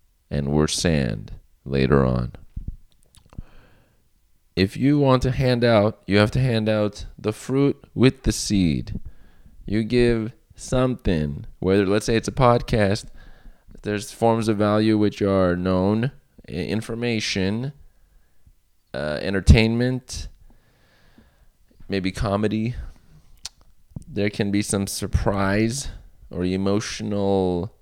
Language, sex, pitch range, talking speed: English, male, 85-110 Hz, 105 wpm